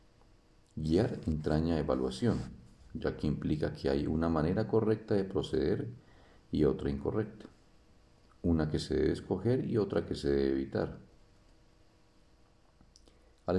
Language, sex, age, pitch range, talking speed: Spanish, male, 50-69, 70-100 Hz, 125 wpm